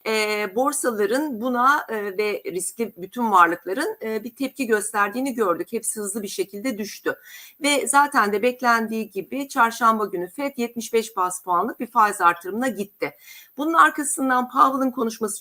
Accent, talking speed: native, 145 wpm